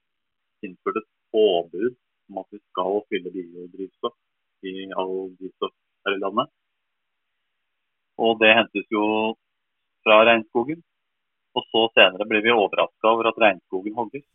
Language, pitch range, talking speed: English, 90-110 Hz, 140 wpm